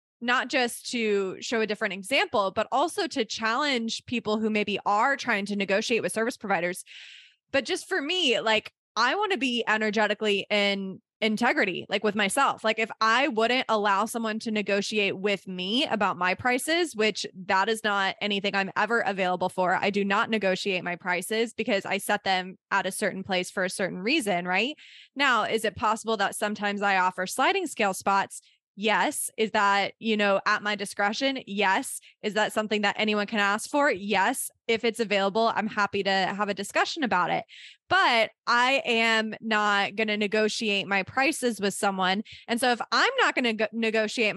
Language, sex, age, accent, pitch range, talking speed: English, female, 20-39, American, 200-230 Hz, 185 wpm